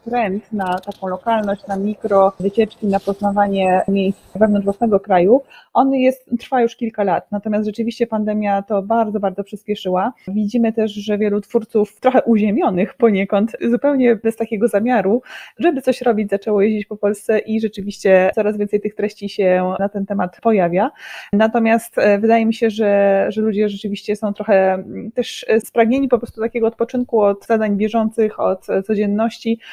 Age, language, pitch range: 20-39, Polish, 195-230 Hz